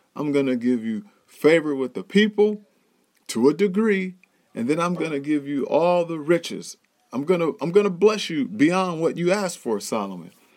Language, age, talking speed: English, 40-59, 205 wpm